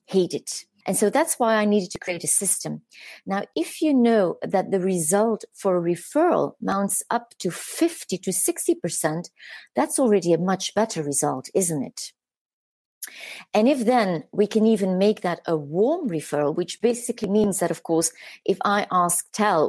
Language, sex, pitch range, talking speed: English, female, 170-225 Hz, 175 wpm